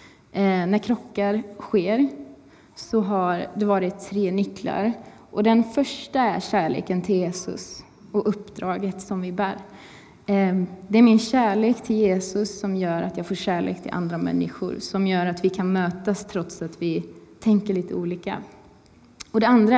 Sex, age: female, 20-39